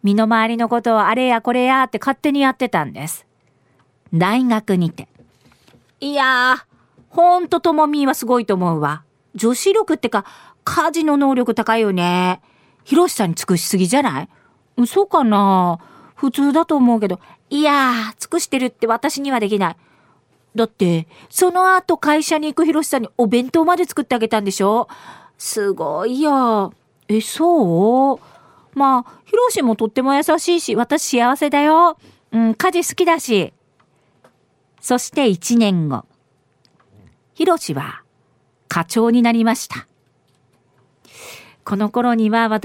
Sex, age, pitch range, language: female, 40-59, 185-290 Hz, Japanese